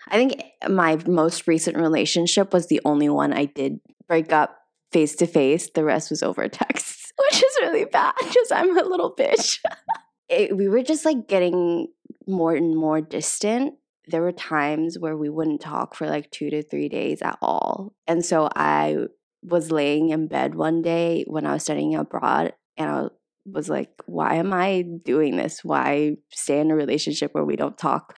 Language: English